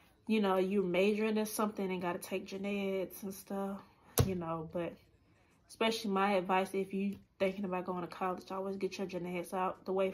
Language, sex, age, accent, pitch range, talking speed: English, female, 20-39, American, 180-215 Hz, 205 wpm